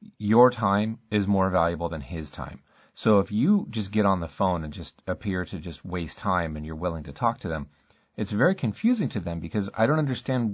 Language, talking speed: English, 220 wpm